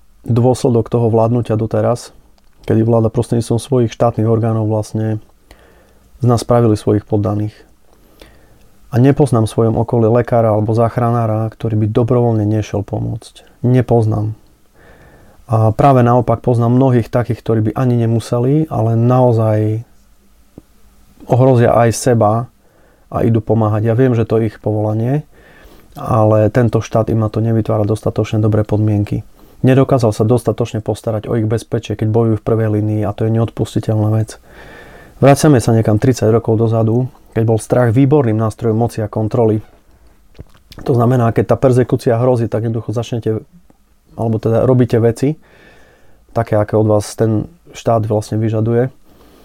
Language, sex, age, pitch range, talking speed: Slovak, male, 30-49, 110-120 Hz, 140 wpm